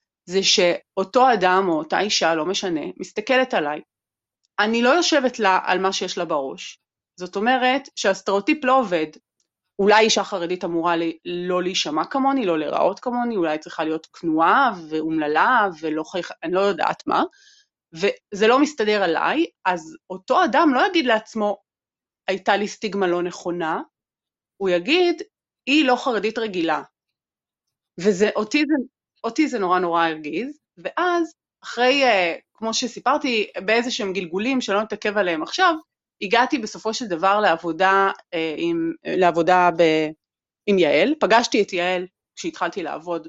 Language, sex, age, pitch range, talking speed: Hebrew, female, 30-49, 175-255 Hz, 135 wpm